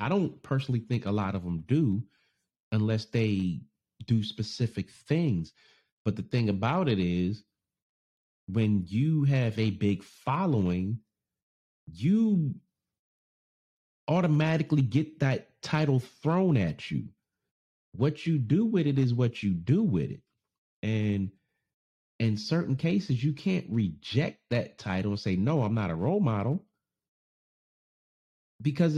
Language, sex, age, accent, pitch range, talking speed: English, male, 30-49, American, 105-150 Hz, 130 wpm